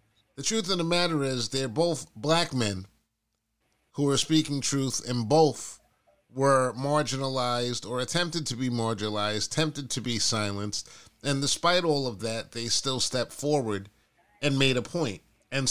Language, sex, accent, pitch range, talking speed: English, male, American, 110-140 Hz, 155 wpm